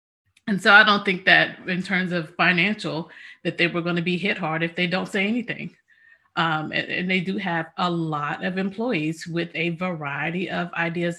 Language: English